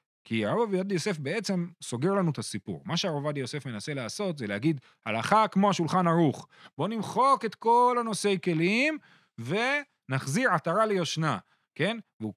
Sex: male